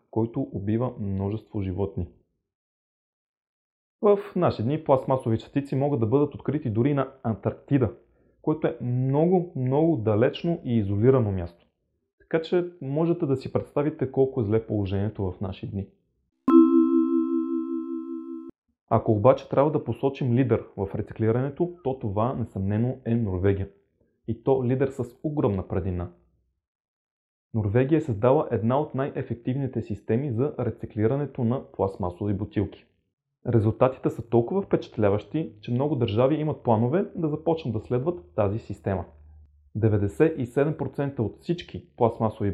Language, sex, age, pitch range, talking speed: Bulgarian, male, 30-49, 100-140 Hz, 125 wpm